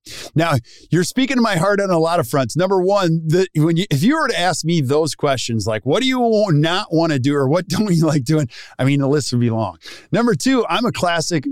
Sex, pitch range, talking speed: male, 120-155 Hz, 260 wpm